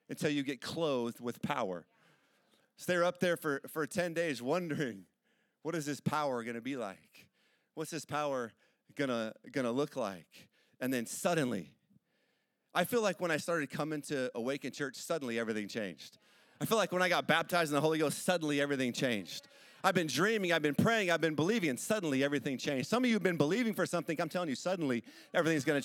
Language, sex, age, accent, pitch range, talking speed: English, male, 40-59, American, 145-220 Hz, 205 wpm